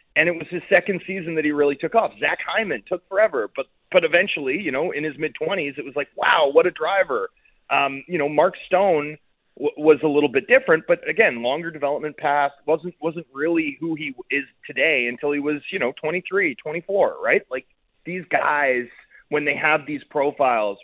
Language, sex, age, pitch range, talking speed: English, male, 30-49, 130-185 Hz, 200 wpm